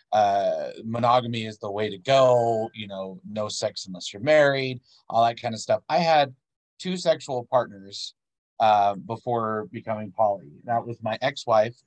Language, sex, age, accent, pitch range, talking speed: English, male, 30-49, American, 110-125 Hz, 160 wpm